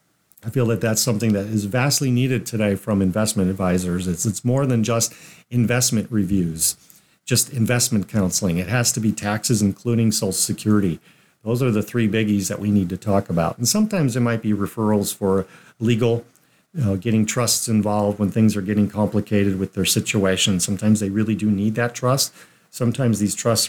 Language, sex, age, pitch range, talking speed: English, male, 50-69, 105-125 Hz, 185 wpm